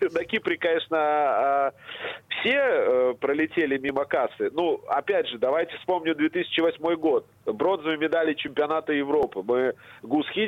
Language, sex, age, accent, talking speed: Russian, male, 30-49, native, 115 wpm